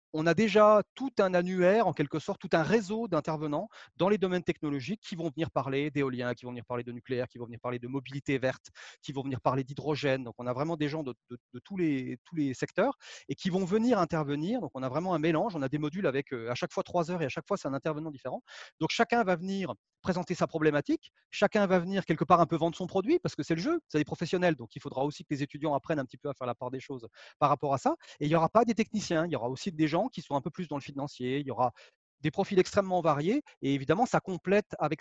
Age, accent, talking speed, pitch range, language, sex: 30-49, French, 280 wpm, 140-180 Hz, French, male